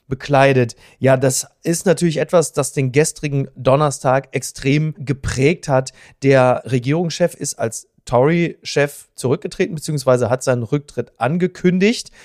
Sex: male